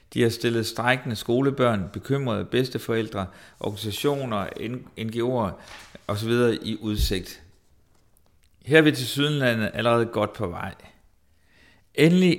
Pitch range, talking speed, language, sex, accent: 105-135 Hz, 105 wpm, Danish, male, native